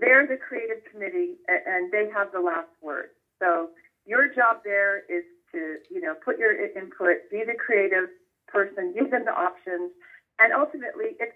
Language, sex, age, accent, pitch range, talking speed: English, female, 40-59, American, 195-280 Hz, 170 wpm